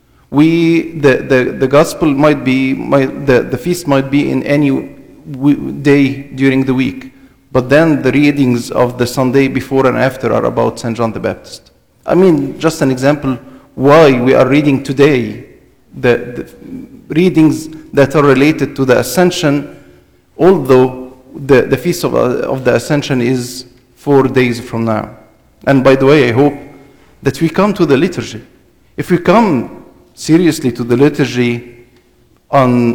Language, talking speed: English, 160 wpm